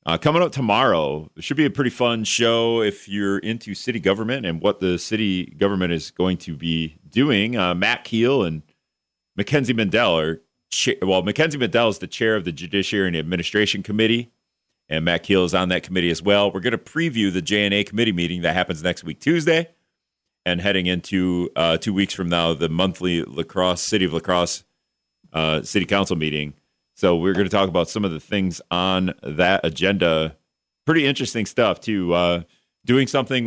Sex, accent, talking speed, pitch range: male, American, 190 wpm, 85-115 Hz